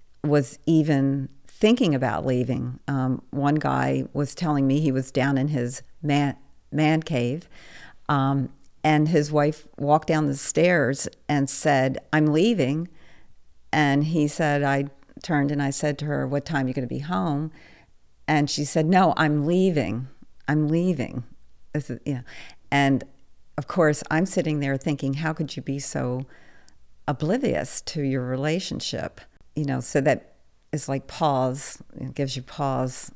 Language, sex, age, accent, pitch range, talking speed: English, female, 50-69, American, 125-150 Hz, 150 wpm